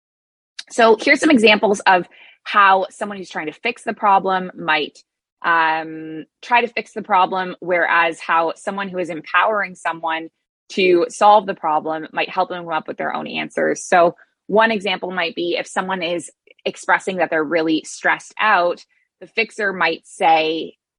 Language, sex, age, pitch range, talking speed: English, female, 20-39, 165-225 Hz, 165 wpm